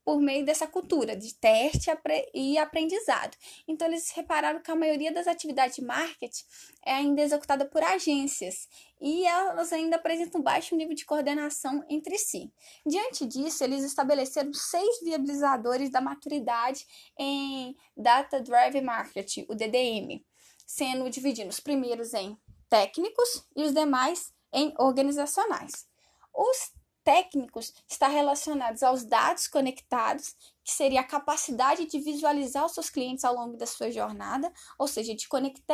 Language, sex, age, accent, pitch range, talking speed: Portuguese, female, 10-29, Brazilian, 265-330 Hz, 140 wpm